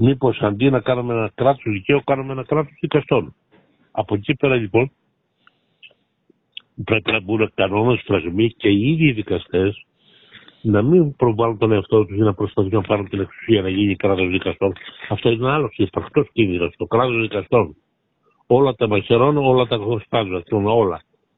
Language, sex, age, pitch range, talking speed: Greek, male, 60-79, 100-125 Hz, 165 wpm